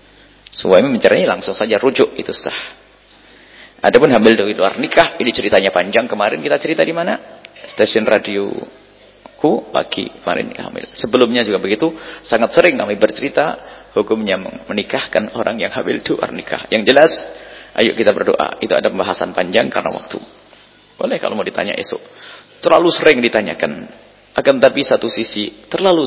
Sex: male